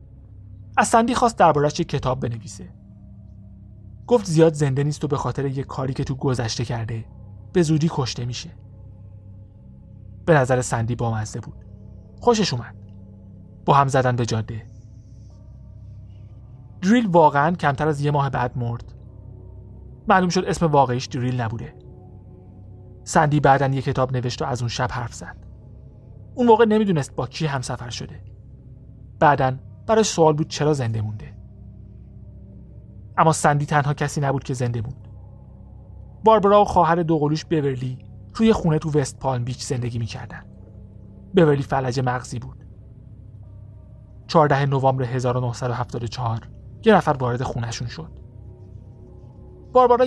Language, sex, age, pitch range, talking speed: Persian, male, 30-49, 105-150 Hz, 130 wpm